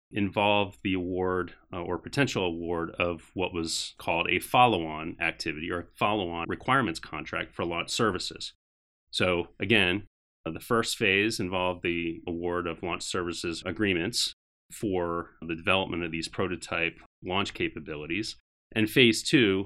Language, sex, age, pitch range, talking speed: English, male, 30-49, 85-105 Hz, 135 wpm